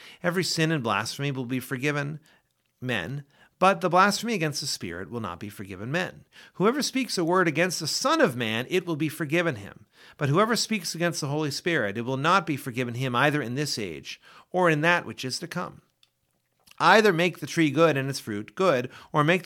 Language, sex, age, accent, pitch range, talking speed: English, male, 50-69, American, 130-180 Hz, 210 wpm